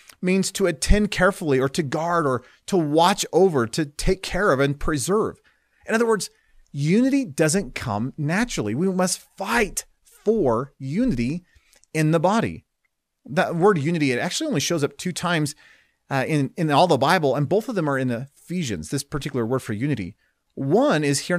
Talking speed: 175 wpm